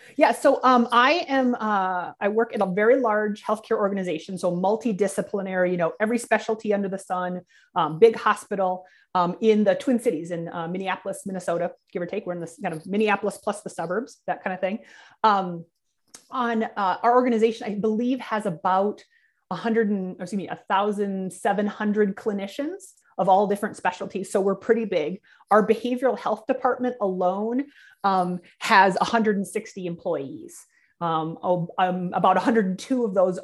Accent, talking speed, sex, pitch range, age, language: American, 160 wpm, female, 180-230 Hz, 30-49, English